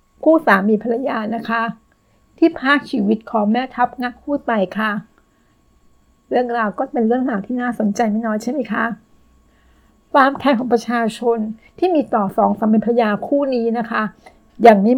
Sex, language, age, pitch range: female, Thai, 60-79, 210-250 Hz